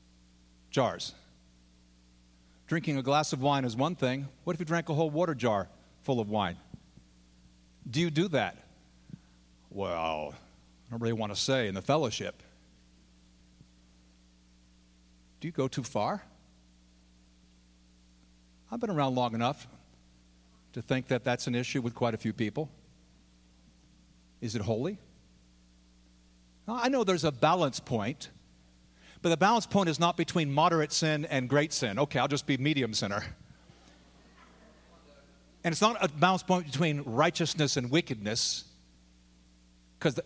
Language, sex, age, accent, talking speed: English, male, 50-69, American, 140 wpm